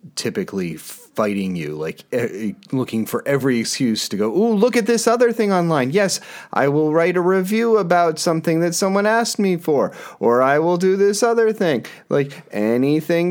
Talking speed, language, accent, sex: 180 wpm, English, American, male